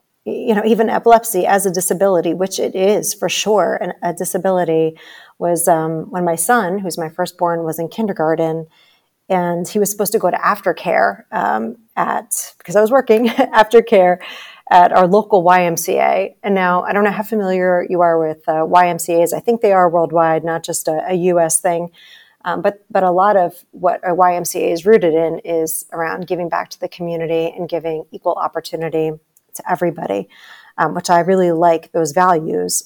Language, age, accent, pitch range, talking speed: English, 40-59, American, 165-195 Hz, 185 wpm